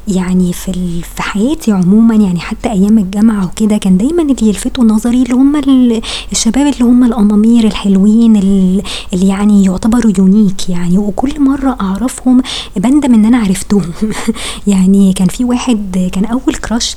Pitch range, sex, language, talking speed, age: 195-230 Hz, male, Arabic, 140 wpm, 20-39